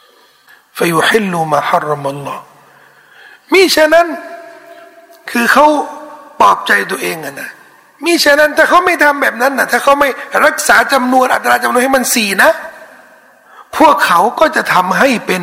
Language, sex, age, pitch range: Thai, male, 60-79, 200-285 Hz